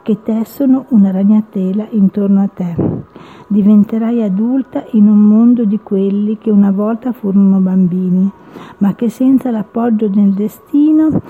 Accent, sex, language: native, female, Italian